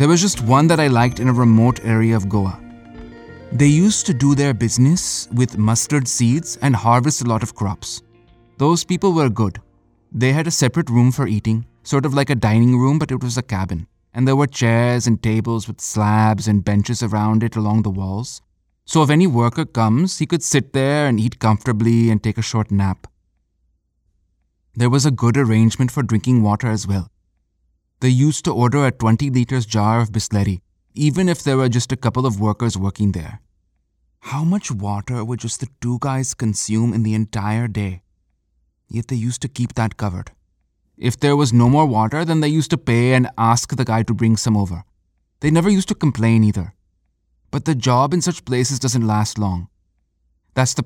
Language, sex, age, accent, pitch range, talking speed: English, male, 20-39, Indian, 105-130 Hz, 200 wpm